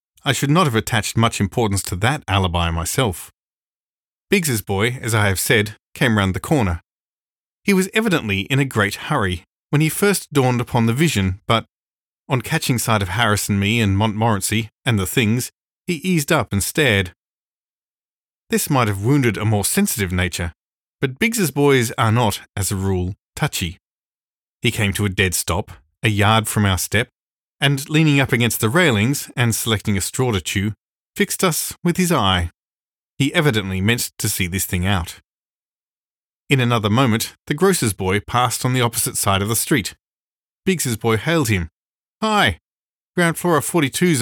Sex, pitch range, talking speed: male, 100-140 Hz, 175 wpm